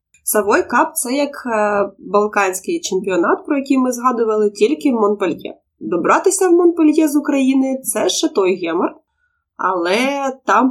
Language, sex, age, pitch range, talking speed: Ukrainian, female, 20-39, 210-335 Hz, 145 wpm